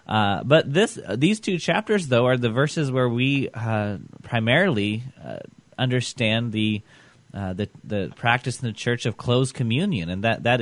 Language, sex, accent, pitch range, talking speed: English, male, American, 100-125 Hz, 175 wpm